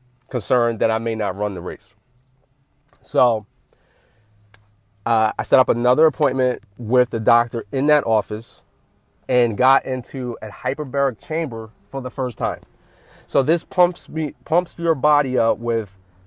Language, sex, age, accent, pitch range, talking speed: English, male, 30-49, American, 115-155 Hz, 150 wpm